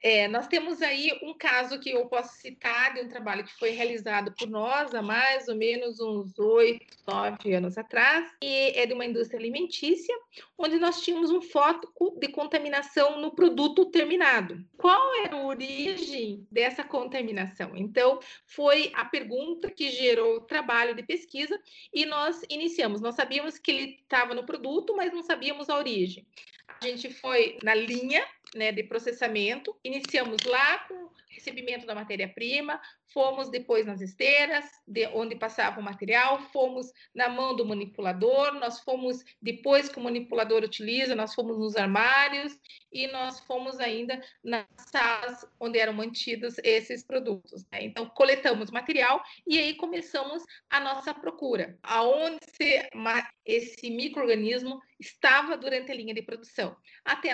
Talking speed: 150 wpm